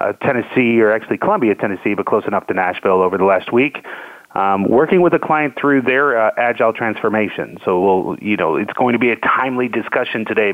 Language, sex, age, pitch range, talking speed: English, male, 30-49, 110-140 Hz, 200 wpm